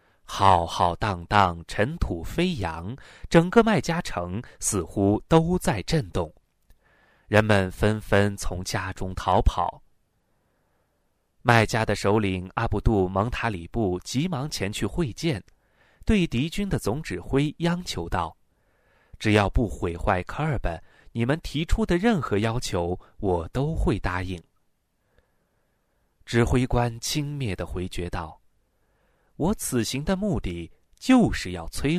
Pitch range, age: 90-125 Hz, 30-49